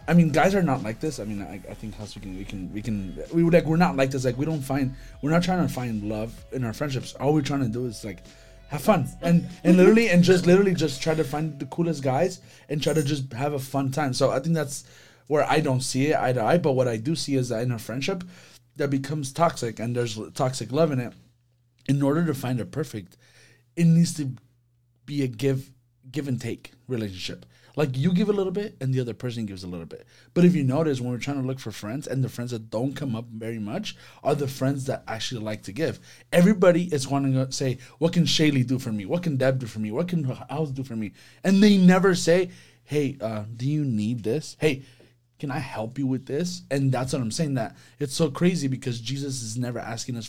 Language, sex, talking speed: English, male, 255 wpm